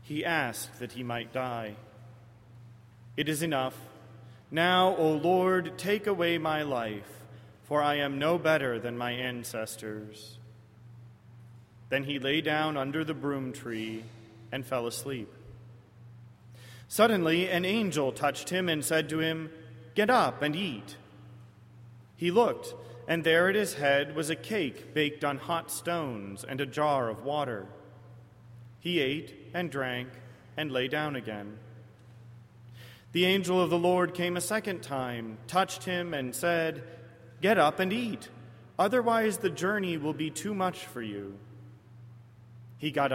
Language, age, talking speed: English, 30-49, 145 wpm